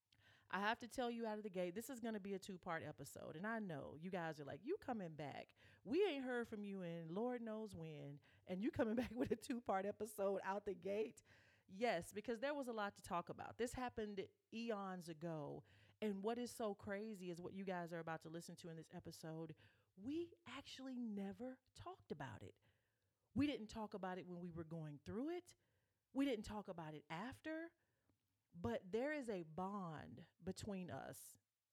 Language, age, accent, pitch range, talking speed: English, 40-59, American, 155-215 Hz, 200 wpm